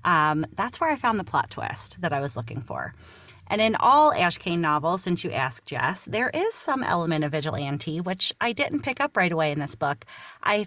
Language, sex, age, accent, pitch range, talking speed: English, female, 30-49, American, 155-210 Hz, 225 wpm